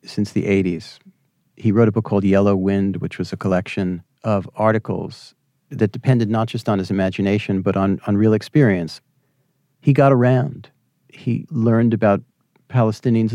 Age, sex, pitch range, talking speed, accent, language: 50-69, male, 110-145 Hz, 155 wpm, American, English